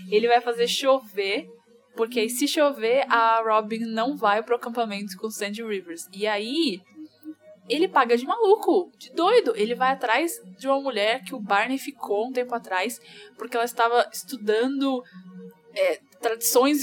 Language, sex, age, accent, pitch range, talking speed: Portuguese, female, 10-29, Brazilian, 225-290 Hz, 155 wpm